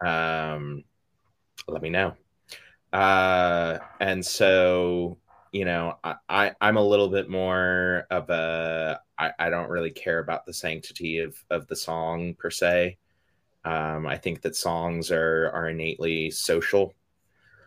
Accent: American